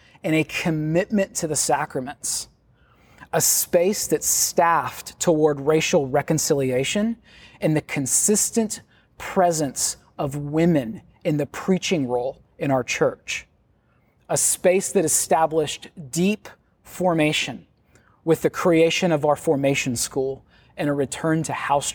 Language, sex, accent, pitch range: English, male, American, 145-180 Hz